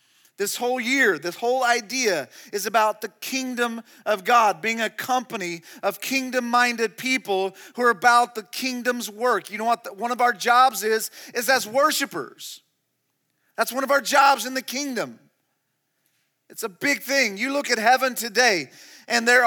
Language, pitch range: English, 235-275 Hz